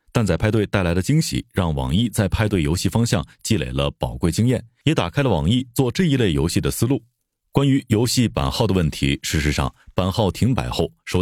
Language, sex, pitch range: Chinese, male, 85-120 Hz